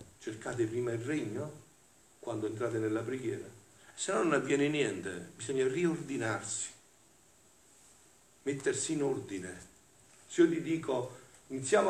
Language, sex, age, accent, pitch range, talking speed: Italian, male, 50-69, native, 115-175 Hz, 115 wpm